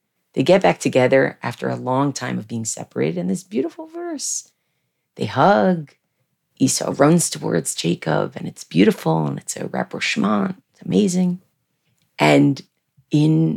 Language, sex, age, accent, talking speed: English, female, 40-59, American, 140 wpm